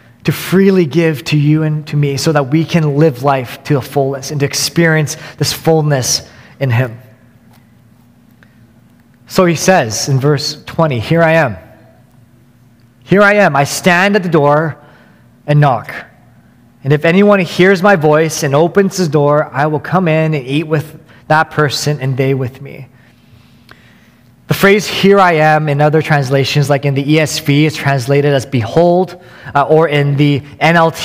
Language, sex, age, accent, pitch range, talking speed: English, male, 20-39, American, 135-165 Hz, 170 wpm